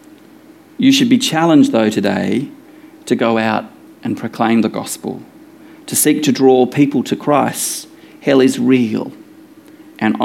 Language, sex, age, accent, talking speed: English, male, 40-59, Australian, 140 wpm